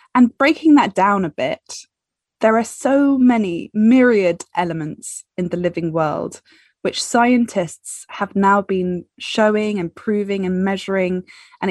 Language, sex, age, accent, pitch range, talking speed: English, female, 20-39, British, 175-230 Hz, 140 wpm